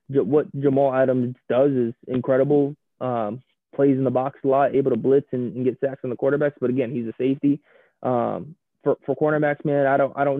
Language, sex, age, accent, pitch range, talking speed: English, male, 20-39, American, 130-150 Hz, 215 wpm